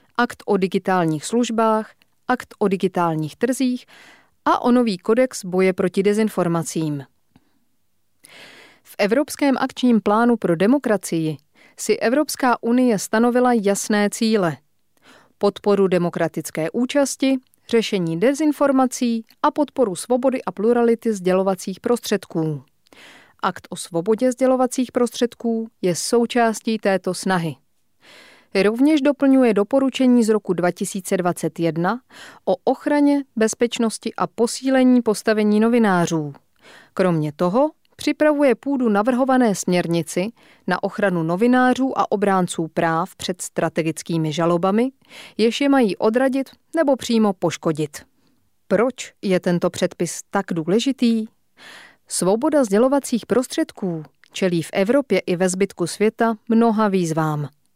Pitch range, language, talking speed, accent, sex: 180-250 Hz, Czech, 105 wpm, native, female